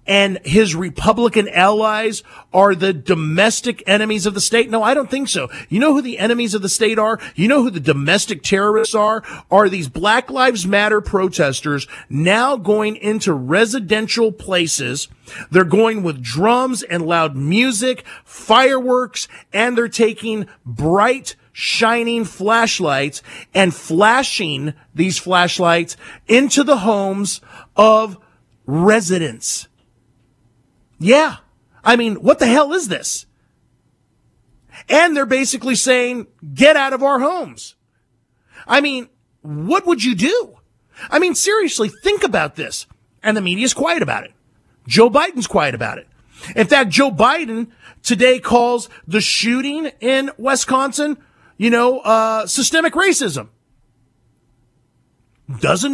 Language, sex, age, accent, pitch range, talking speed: English, male, 40-59, American, 170-250 Hz, 130 wpm